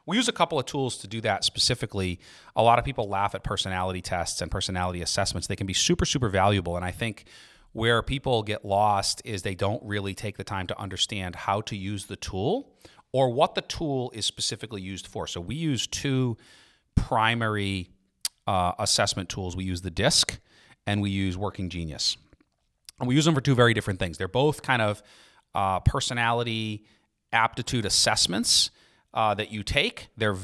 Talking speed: 185 wpm